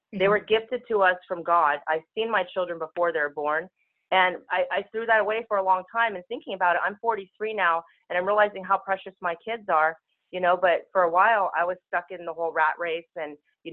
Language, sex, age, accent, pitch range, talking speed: English, female, 30-49, American, 165-195 Hz, 245 wpm